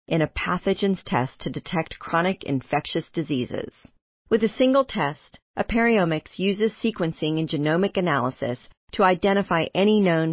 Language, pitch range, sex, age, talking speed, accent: English, 150-200 Hz, female, 40-59, 135 wpm, American